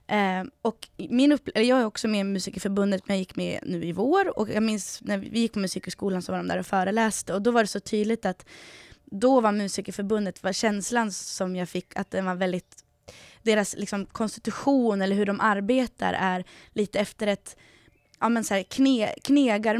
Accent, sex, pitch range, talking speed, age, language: native, female, 190-230 Hz, 195 wpm, 20-39, Swedish